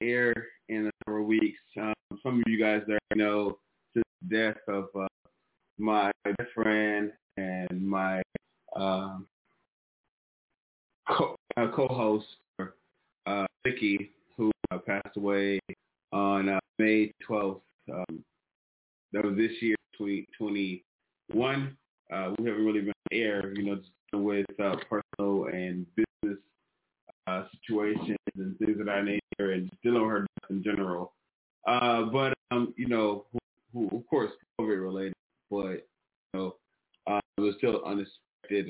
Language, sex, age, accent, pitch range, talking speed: English, male, 20-39, American, 100-115 Hz, 130 wpm